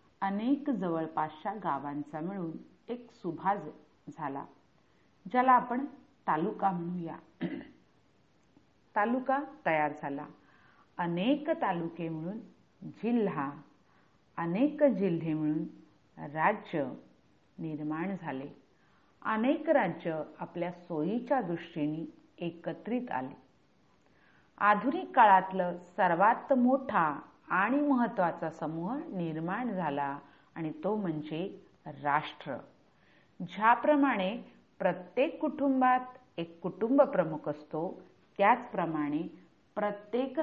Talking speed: 45 wpm